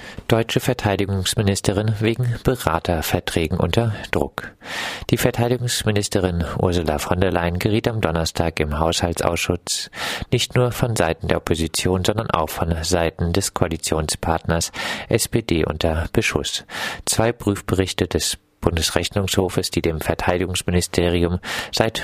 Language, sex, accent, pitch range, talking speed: German, male, German, 85-105 Hz, 110 wpm